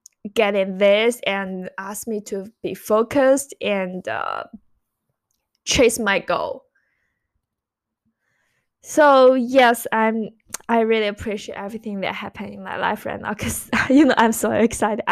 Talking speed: 130 wpm